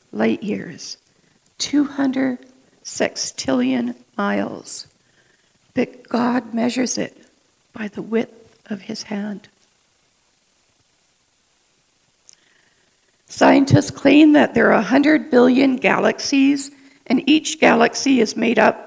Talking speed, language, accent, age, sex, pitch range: 90 wpm, English, American, 60-79, female, 215-255 Hz